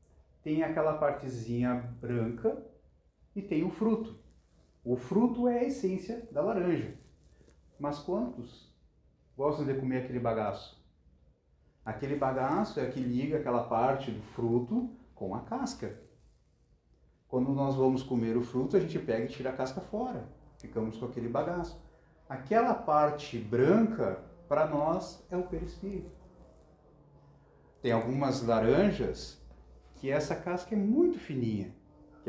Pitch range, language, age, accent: 115-180 Hz, Portuguese, 40-59, Brazilian